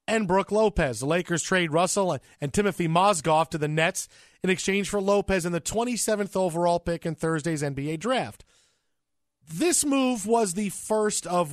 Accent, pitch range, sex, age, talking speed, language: American, 155-190 Hz, male, 40-59, 165 wpm, English